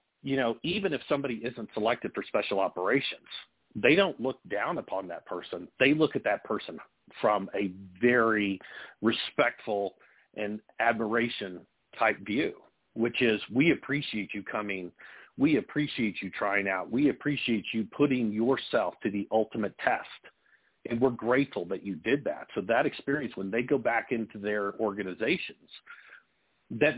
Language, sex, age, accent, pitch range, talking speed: English, male, 50-69, American, 100-125 Hz, 150 wpm